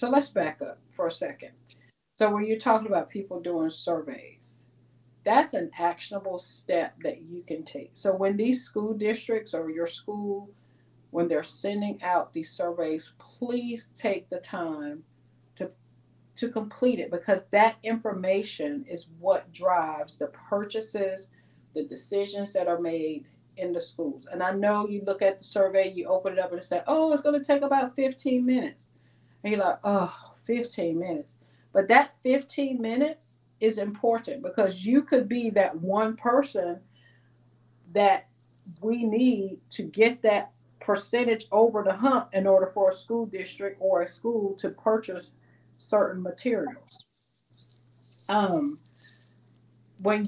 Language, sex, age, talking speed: English, female, 40-59, 150 wpm